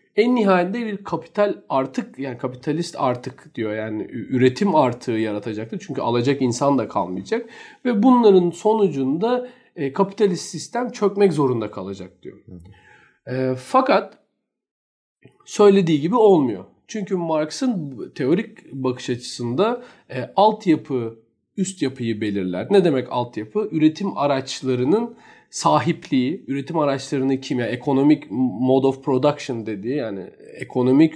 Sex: male